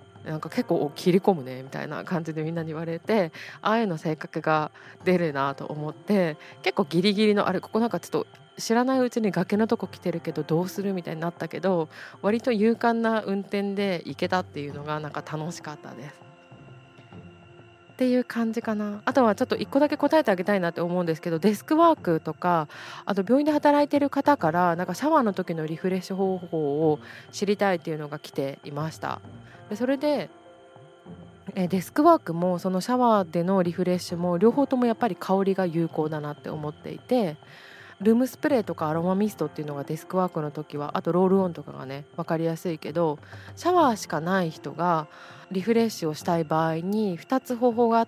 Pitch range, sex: 155-210 Hz, female